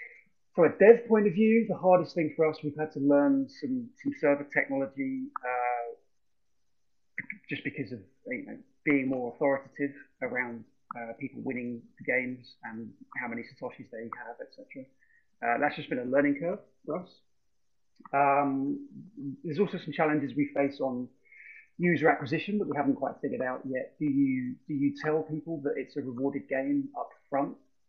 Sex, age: male, 30-49